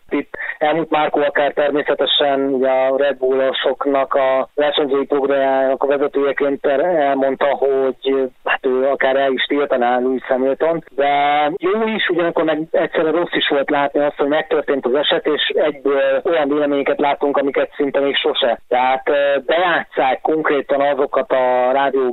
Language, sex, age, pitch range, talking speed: Hungarian, male, 30-49, 130-145 Hz, 145 wpm